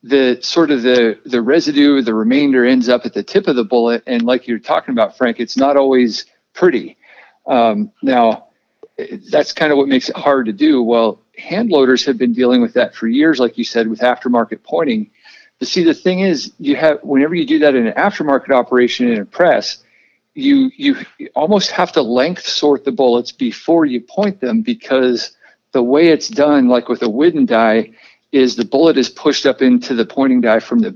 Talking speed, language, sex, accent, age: 205 wpm, English, male, American, 50-69